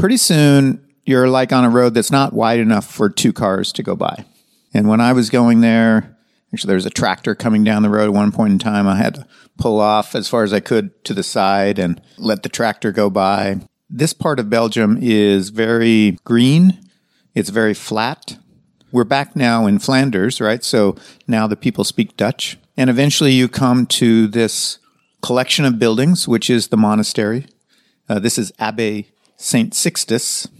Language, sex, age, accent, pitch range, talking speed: English, male, 50-69, American, 110-135 Hz, 190 wpm